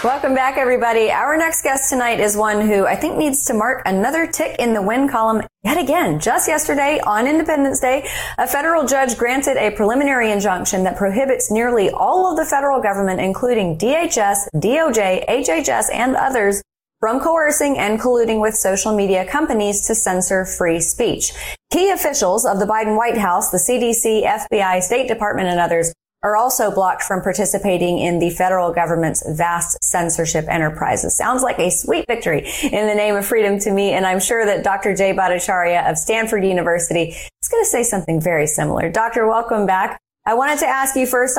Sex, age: female, 30-49